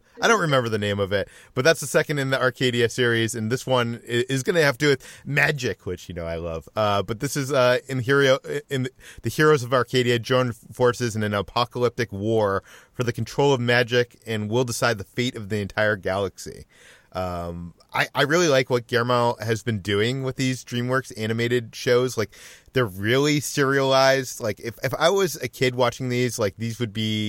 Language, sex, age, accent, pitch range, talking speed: English, male, 30-49, American, 100-125 Hz, 205 wpm